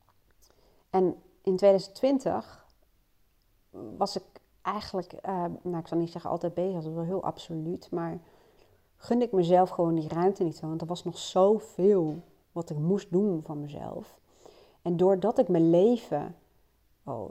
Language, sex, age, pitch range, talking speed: Dutch, female, 30-49, 165-210 Hz, 155 wpm